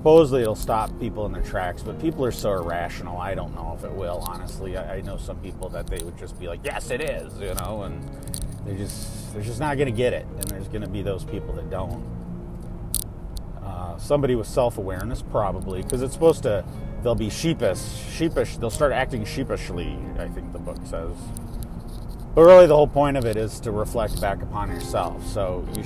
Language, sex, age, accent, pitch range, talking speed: English, male, 30-49, American, 90-120 Hz, 210 wpm